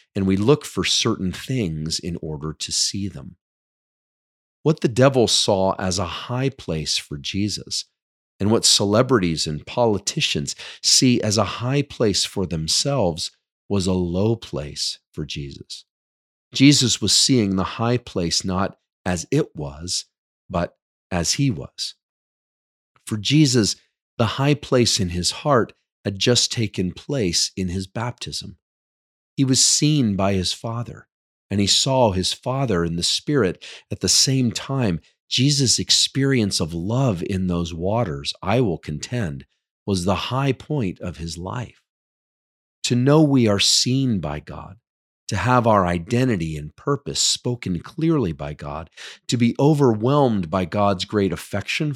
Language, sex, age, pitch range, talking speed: English, male, 40-59, 90-125 Hz, 145 wpm